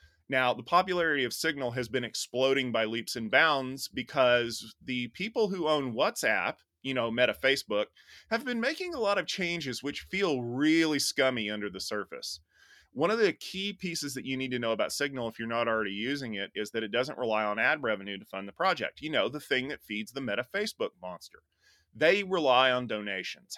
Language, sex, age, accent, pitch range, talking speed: English, male, 30-49, American, 110-155 Hz, 205 wpm